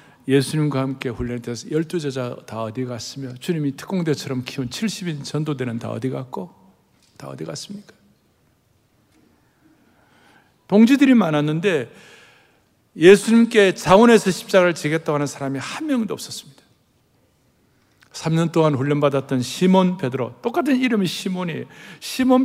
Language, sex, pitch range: Korean, male, 130-200 Hz